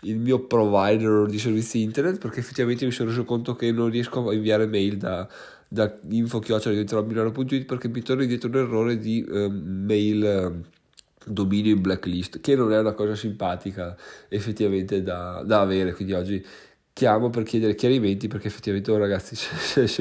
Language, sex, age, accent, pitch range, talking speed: Italian, male, 20-39, native, 105-125 Hz, 170 wpm